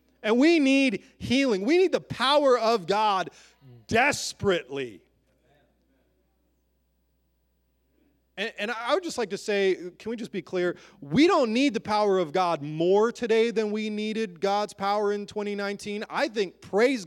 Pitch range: 130-205 Hz